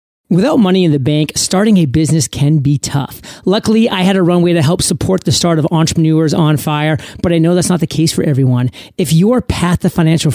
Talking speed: 225 wpm